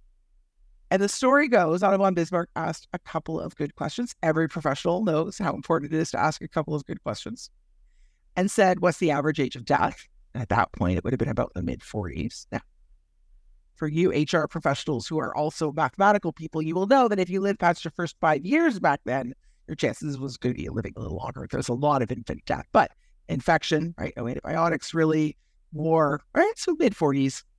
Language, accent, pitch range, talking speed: English, American, 145-195 Hz, 210 wpm